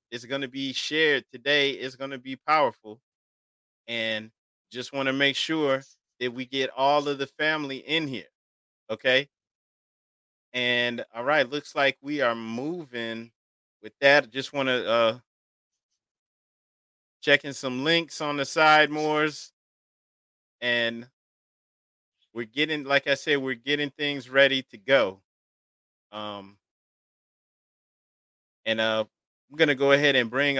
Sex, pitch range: male, 120-150 Hz